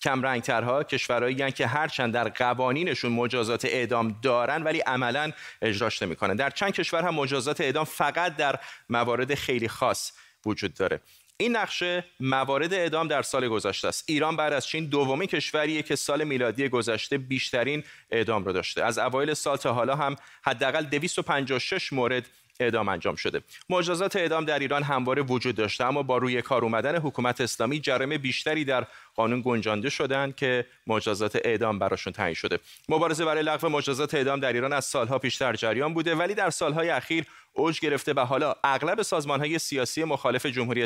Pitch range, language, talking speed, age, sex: 120-150 Hz, Persian, 165 wpm, 30-49, male